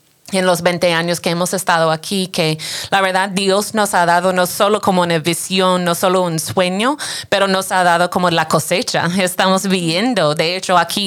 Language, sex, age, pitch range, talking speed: English, female, 30-49, 175-195 Hz, 195 wpm